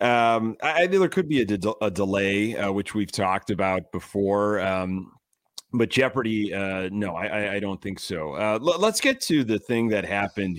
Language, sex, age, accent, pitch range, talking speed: English, male, 30-49, American, 100-125 Hz, 210 wpm